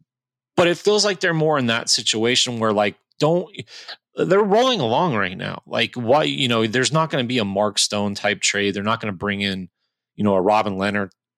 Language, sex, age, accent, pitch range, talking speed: English, male, 30-49, American, 100-125 Hz, 220 wpm